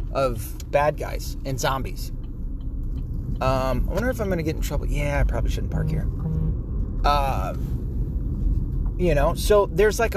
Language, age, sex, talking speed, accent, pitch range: English, 30-49, male, 155 wpm, American, 115-165 Hz